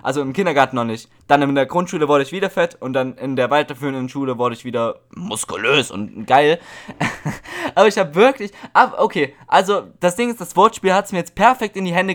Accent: German